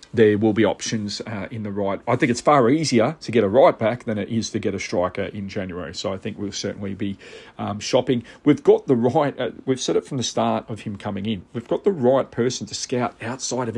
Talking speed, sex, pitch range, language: 255 wpm, male, 100-120 Hz, English